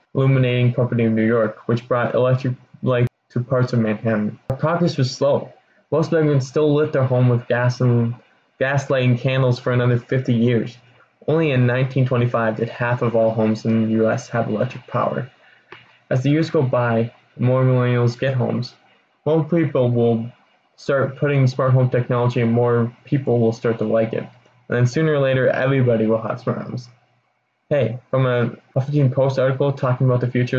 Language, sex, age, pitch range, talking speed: English, male, 20-39, 120-135 Hz, 180 wpm